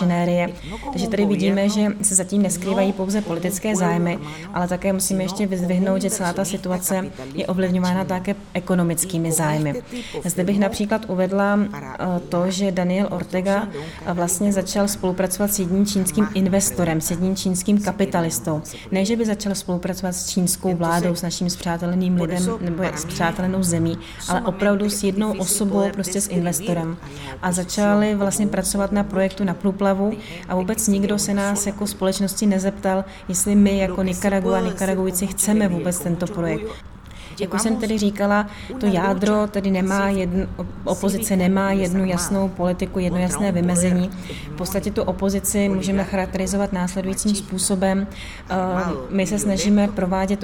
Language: Czech